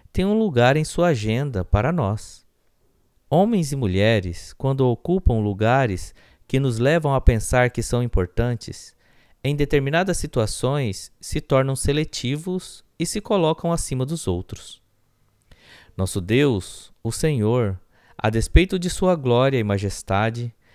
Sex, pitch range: male, 100-145 Hz